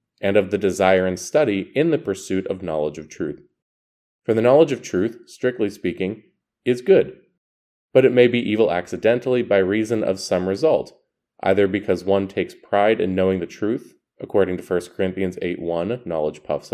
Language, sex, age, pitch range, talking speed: English, male, 20-39, 85-115 Hz, 175 wpm